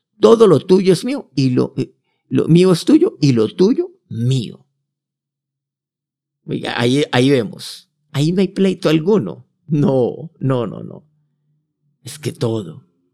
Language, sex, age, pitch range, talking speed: Spanish, male, 50-69, 125-170 Hz, 135 wpm